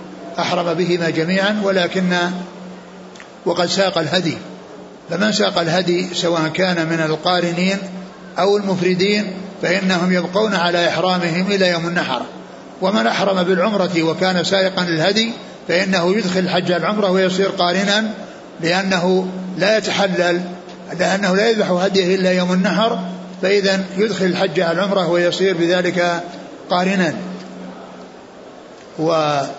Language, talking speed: Arabic, 110 wpm